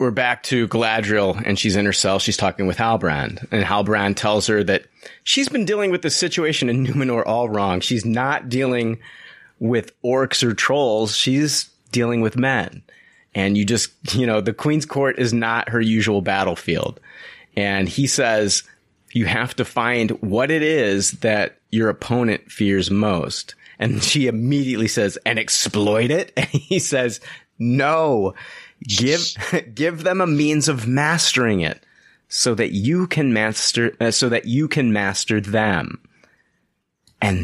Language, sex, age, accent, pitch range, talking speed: English, male, 30-49, American, 105-135 Hz, 160 wpm